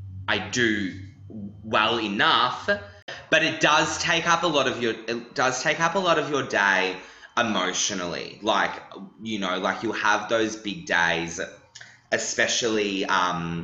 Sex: male